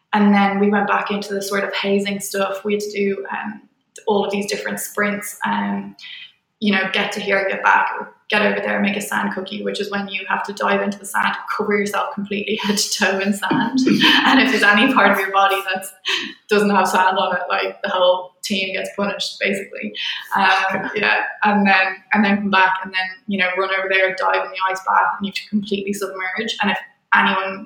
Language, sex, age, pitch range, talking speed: English, female, 10-29, 190-205 Hz, 225 wpm